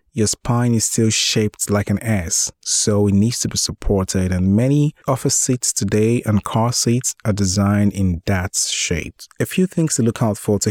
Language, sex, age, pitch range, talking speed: English, male, 30-49, 100-130 Hz, 195 wpm